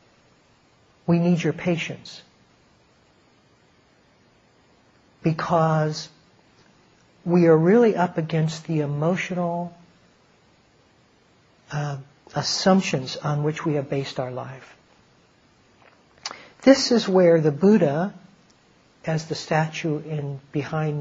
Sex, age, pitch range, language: male, 60-79, 145-180 Hz, English